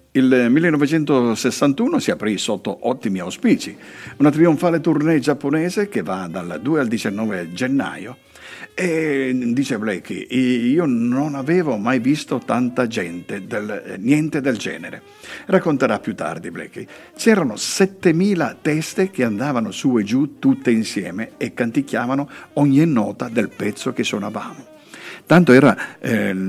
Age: 50-69